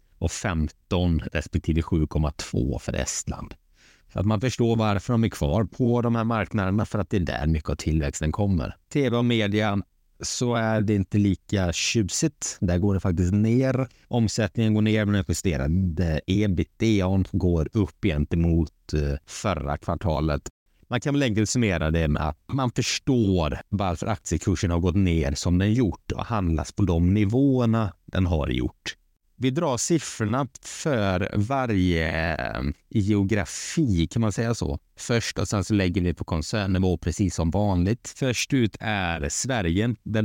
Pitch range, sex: 80-110 Hz, male